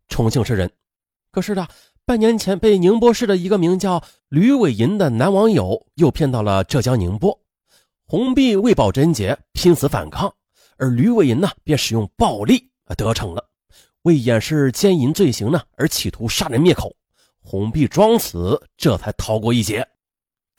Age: 30-49